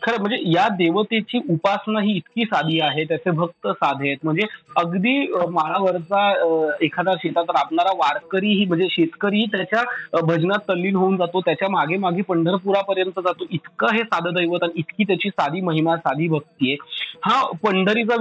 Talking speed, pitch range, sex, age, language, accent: 155 wpm, 165-205 Hz, male, 30-49, Marathi, native